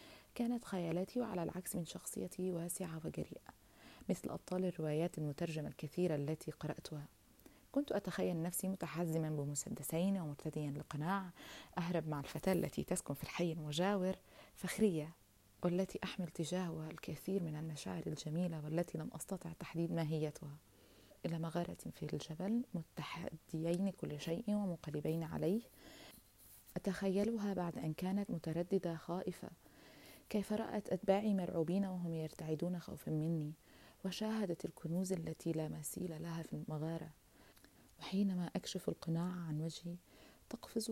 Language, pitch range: Arabic, 155-190 Hz